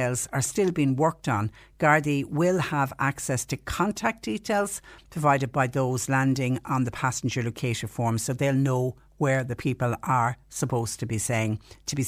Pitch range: 120-145 Hz